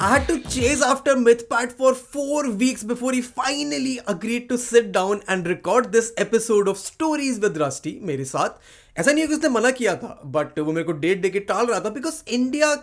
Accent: native